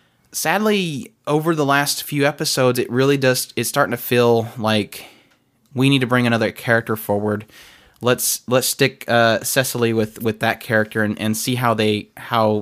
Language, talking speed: English, 170 wpm